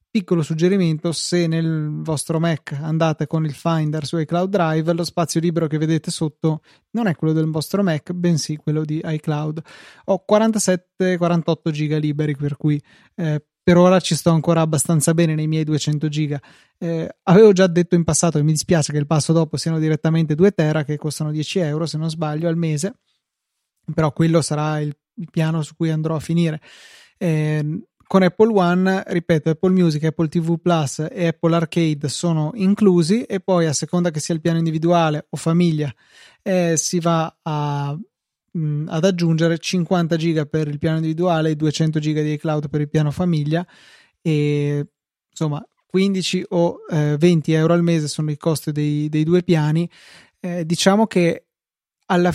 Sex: male